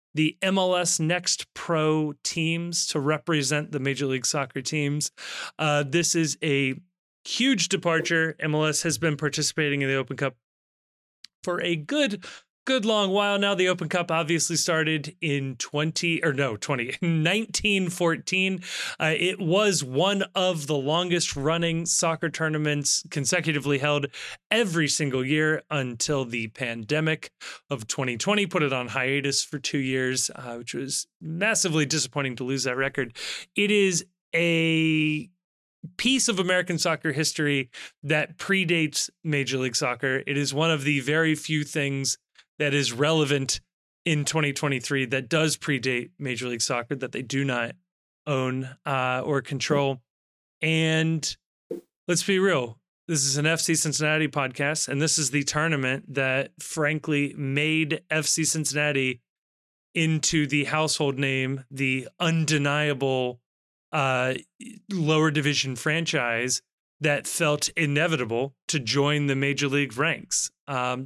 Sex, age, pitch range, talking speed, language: male, 30-49, 135-165 Hz, 135 wpm, English